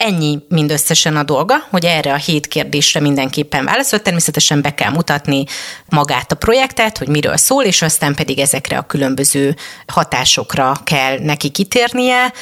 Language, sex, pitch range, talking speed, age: Hungarian, female, 150-180 Hz, 150 wpm, 30-49